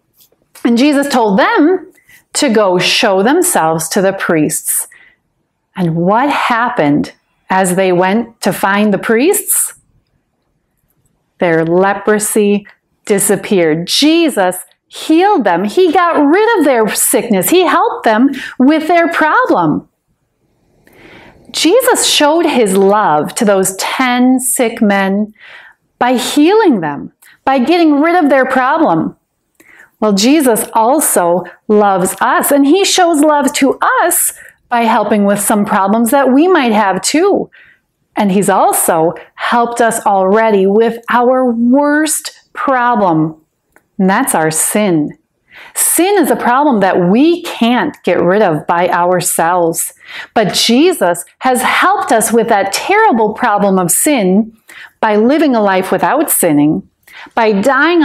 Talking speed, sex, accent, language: 125 wpm, female, American, English